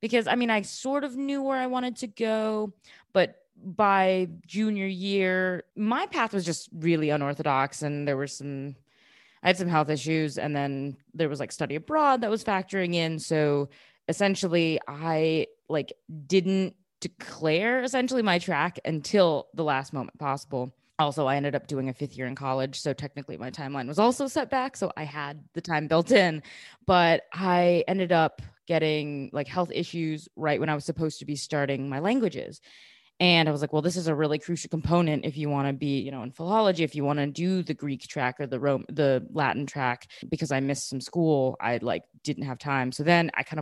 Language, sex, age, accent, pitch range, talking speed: English, female, 20-39, American, 140-185 Hz, 200 wpm